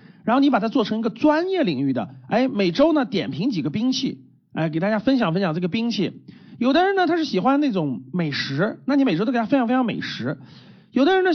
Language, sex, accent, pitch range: Chinese, male, native, 180-260 Hz